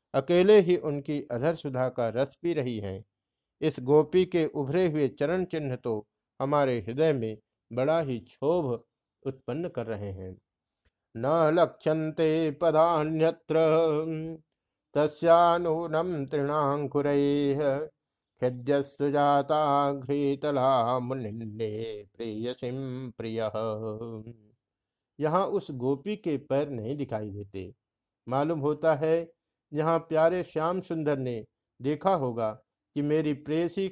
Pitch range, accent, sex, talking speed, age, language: 120-160 Hz, native, male, 95 wpm, 50-69, Hindi